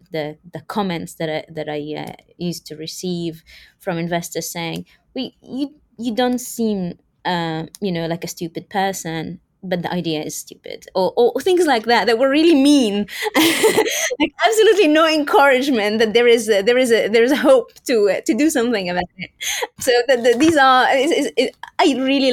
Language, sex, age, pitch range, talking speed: English, female, 20-39, 165-215 Hz, 195 wpm